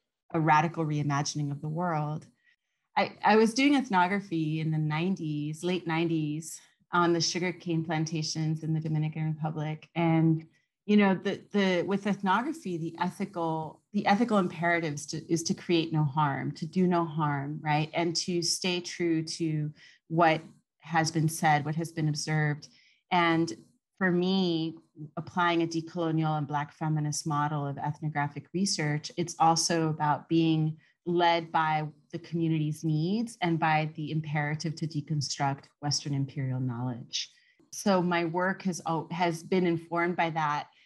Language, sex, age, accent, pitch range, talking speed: English, female, 30-49, American, 155-175 Hz, 145 wpm